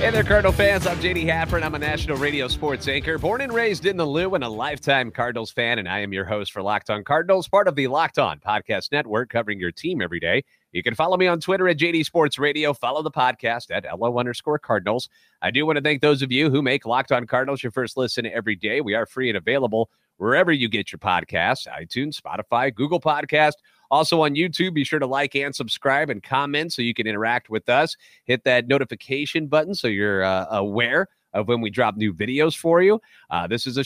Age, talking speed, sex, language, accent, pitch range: 30-49, 235 wpm, male, English, American, 120-160 Hz